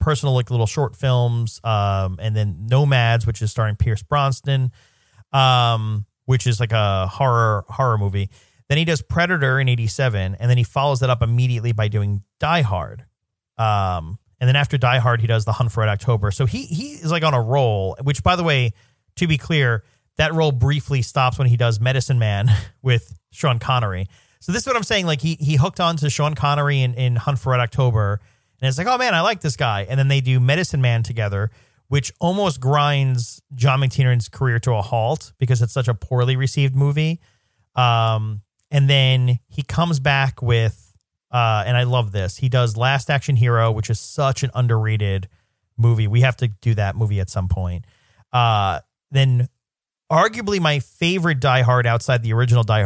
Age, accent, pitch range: 40-59, American, 110-135 Hz